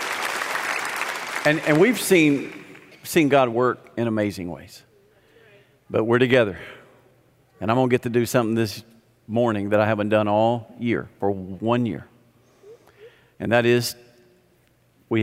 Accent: American